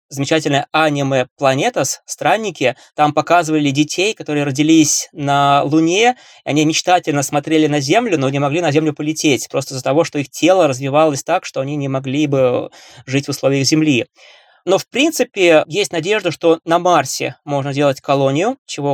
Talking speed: 165 wpm